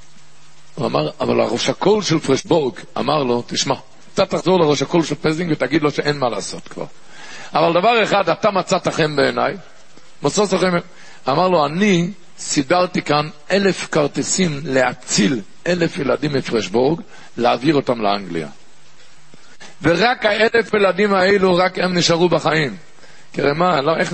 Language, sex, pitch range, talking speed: Hebrew, male, 130-190 Hz, 145 wpm